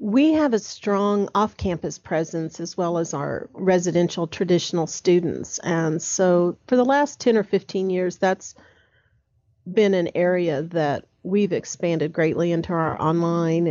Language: English